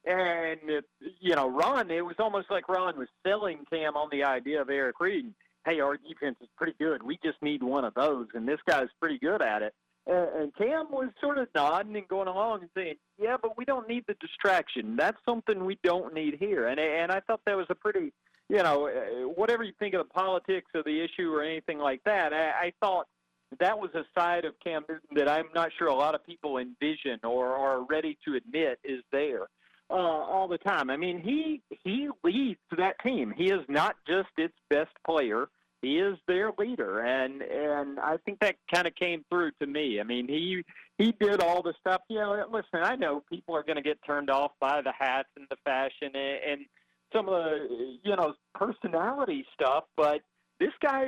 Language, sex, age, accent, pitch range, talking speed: English, male, 40-59, American, 150-210 Hz, 215 wpm